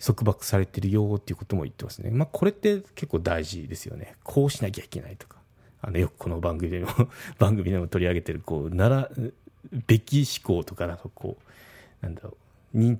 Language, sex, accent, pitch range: Japanese, male, native, 95-120 Hz